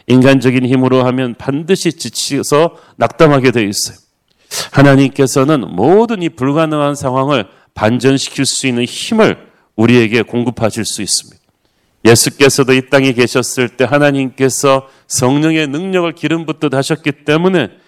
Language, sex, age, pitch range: Korean, male, 40-59, 125-150 Hz